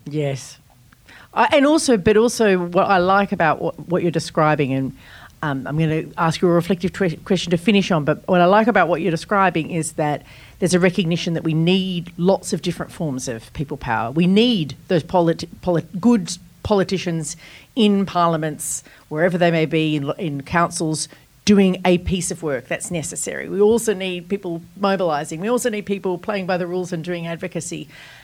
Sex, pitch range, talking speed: female, 150-190 Hz, 190 wpm